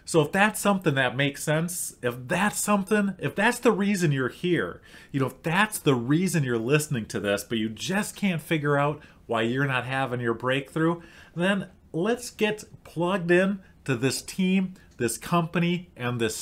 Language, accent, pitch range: English, American, 125-175 Hz